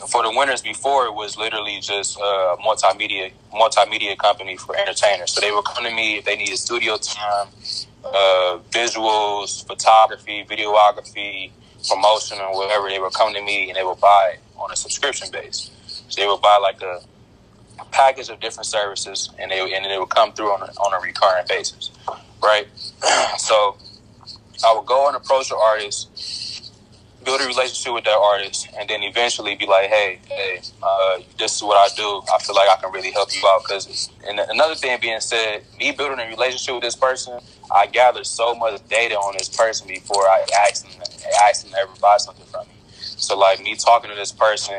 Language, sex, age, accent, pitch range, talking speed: English, male, 20-39, American, 100-110 Hz, 195 wpm